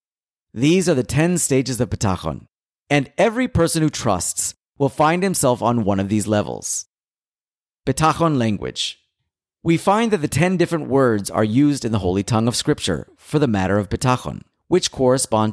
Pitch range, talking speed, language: 95-150 Hz, 170 wpm, English